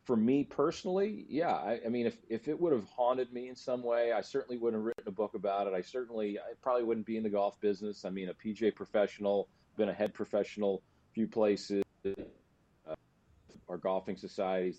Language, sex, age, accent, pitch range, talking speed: English, male, 40-59, American, 95-120 Hz, 210 wpm